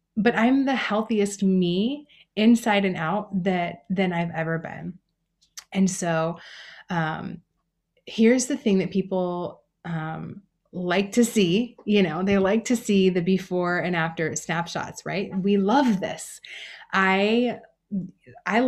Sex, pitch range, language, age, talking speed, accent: female, 170-215 Hz, English, 30-49, 135 wpm, American